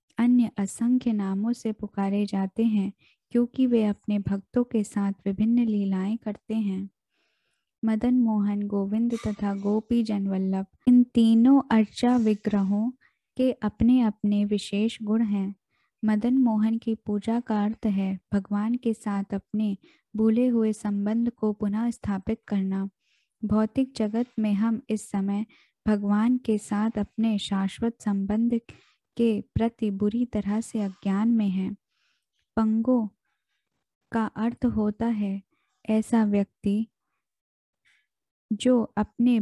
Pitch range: 205-235 Hz